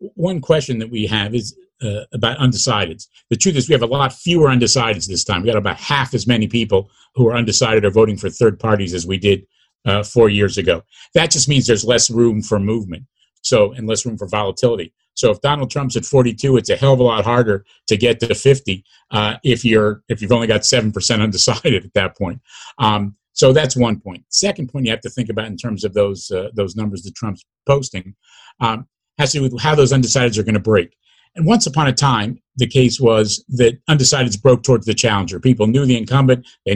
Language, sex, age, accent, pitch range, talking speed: English, male, 50-69, American, 105-130 Hz, 225 wpm